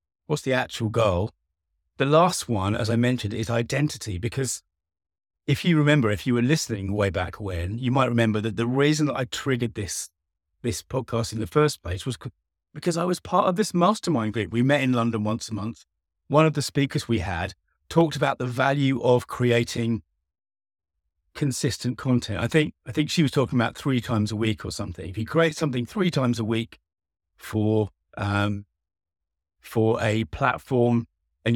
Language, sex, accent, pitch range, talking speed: English, male, British, 95-140 Hz, 185 wpm